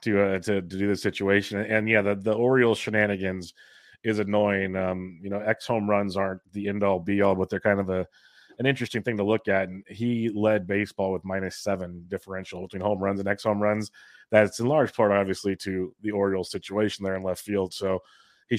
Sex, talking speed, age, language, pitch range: male, 215 wpm, 30-49, English, 95-105 Hz